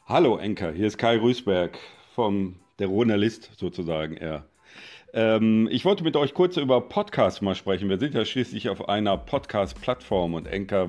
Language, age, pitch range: German, 40-59, 95-115 Hz